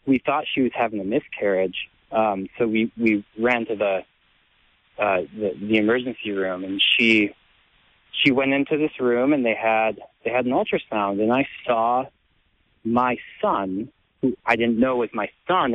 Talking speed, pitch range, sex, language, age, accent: 170 wpm, 105-145 Hz, male, English, 30-49, American